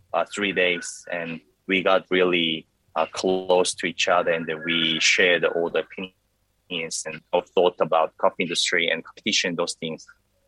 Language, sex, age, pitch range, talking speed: English, male, 20-39, 85-125 Hz, 165 wpm